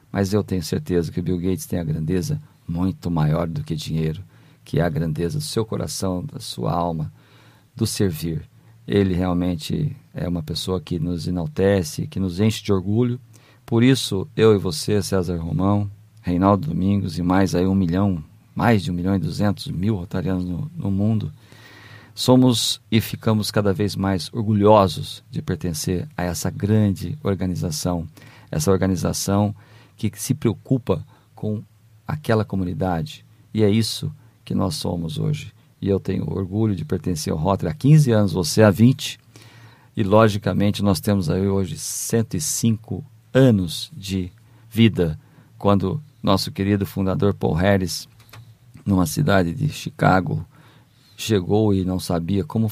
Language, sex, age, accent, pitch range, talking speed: Portuguese, male, 40-59, Brazilian, 95-115 Hz, 155 wpm